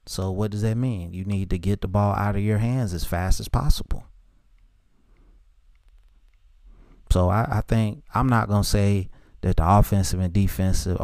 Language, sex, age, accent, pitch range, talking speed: English, male, 30-49, American, 90-110 Hz, 180 wpm